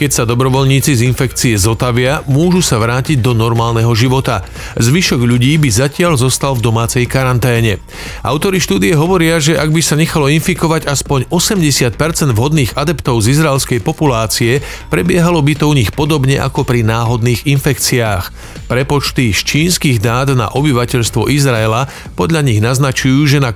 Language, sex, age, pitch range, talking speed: Slovak, male, 40-59, 120-150 Hz, 150 wpm